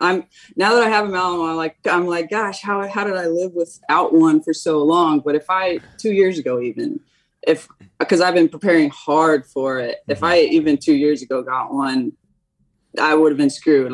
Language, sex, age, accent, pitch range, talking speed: English, female, 20-39, American, 150-185 Hz, 210 wpm